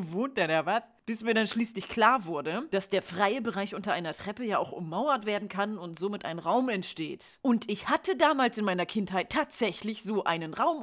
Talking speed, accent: 210 wpm, German